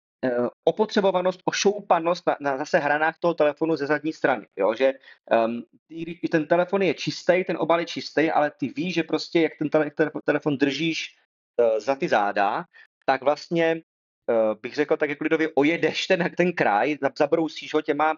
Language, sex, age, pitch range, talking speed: Czech, male, 30-49, 120-155 Hz, 170 wpm